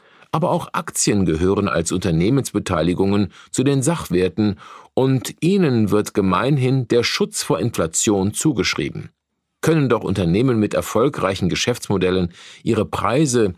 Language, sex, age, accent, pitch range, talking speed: German, male, 50-69, German, 105-150 Hz, 115 wpm